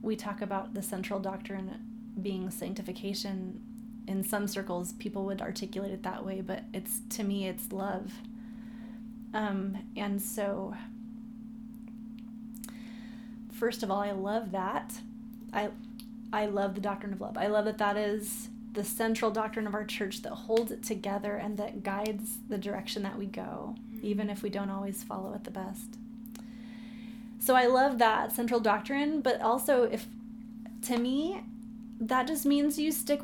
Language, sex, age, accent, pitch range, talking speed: English, female, 20-39, American, 210-235 Hz, 155 wpm